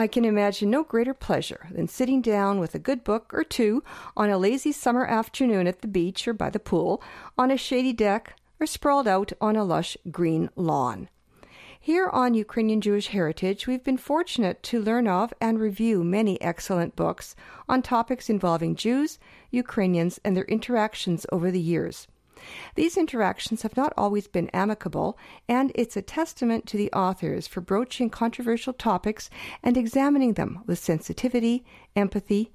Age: 50-69